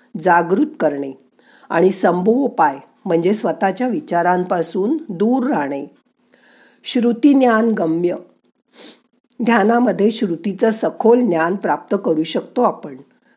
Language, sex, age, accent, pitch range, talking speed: Marathi, female, 50-69, native, 175-240 Hz, 95 wpm